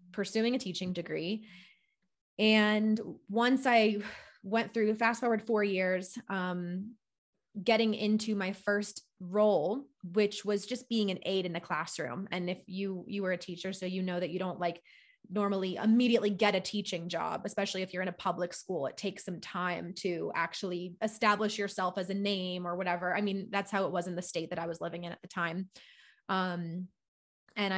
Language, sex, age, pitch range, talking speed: English, female, 20-39, 180-210 Hz, 190 wpm